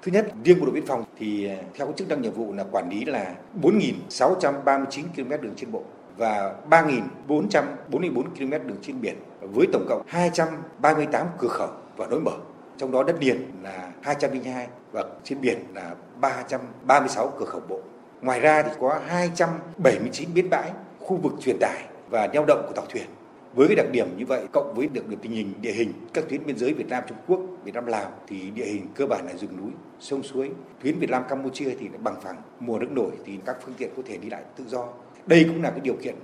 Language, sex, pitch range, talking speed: Vietnamese, male, 125-165 Hz, 220 wpm